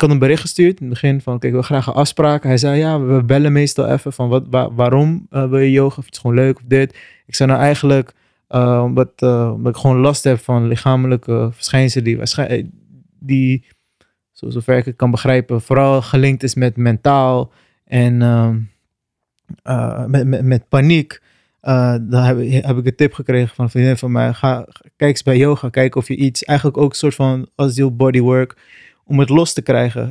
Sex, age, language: male, 20-39, Dutch